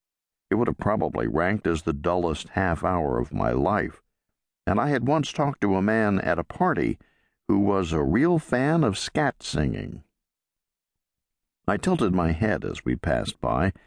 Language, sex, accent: English, male, American